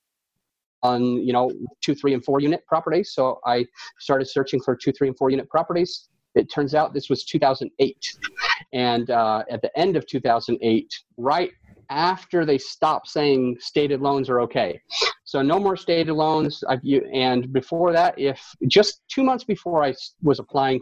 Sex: male